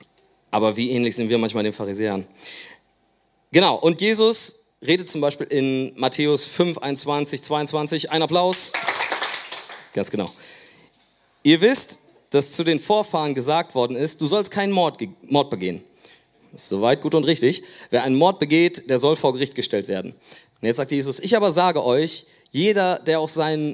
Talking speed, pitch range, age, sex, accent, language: 165 wpm, 130-170 Hz, 30-49, male, German, German